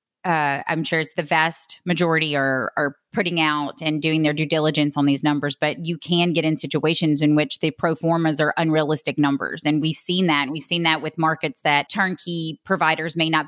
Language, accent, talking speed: English, American, 210 wpm